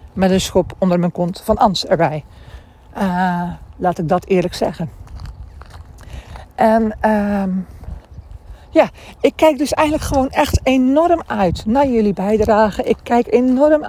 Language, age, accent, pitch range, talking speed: Dutch, 60-79, Dutch, 180-260 Hz, 140 wpm